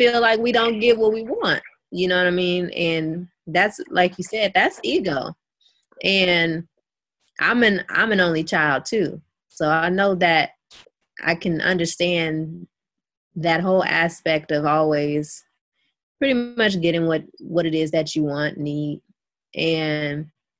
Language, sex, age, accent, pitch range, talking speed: English, female, 20-39, American, 165-225 Hz, 150 wpm